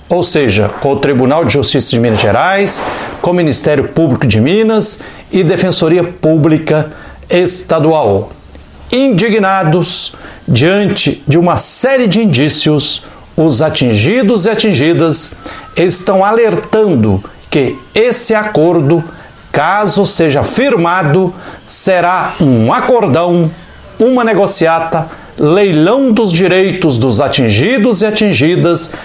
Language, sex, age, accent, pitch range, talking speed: Portuguese, male, 60-79, Brazilian, 150-205 Hz, 105 wpm